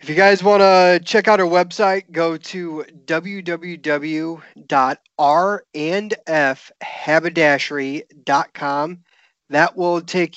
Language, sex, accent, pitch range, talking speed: English, male, American, 140-175 Hz, 85 wpm